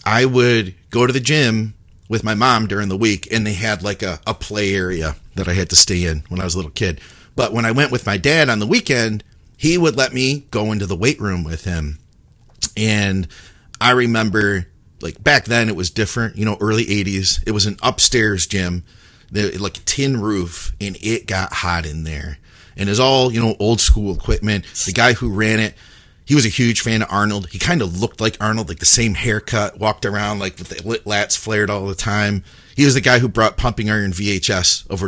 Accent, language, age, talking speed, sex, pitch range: American, English, 40-59, 230 wpm, male, 90-110 Hz